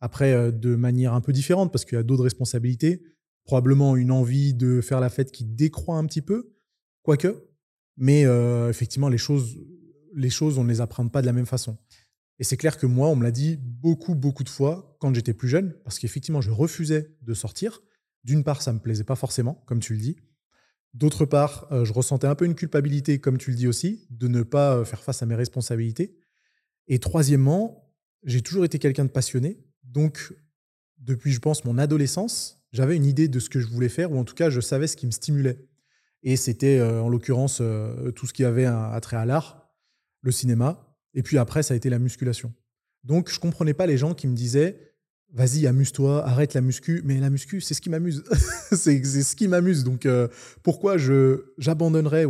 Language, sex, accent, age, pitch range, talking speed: French, male, French, 20-39, 125-155 Hz, 215 wpm